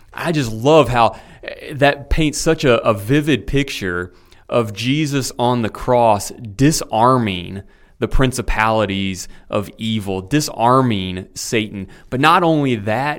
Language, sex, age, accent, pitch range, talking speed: English, male, 30-49, American, 110-145 Hz, 125 wpm